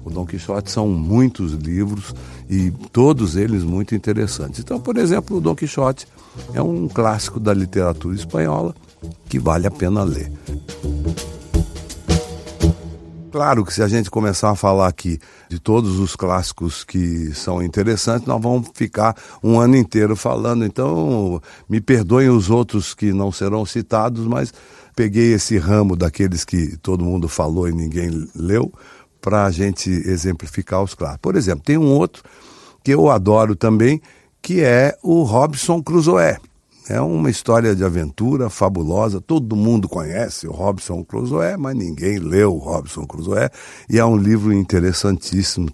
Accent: Brazilian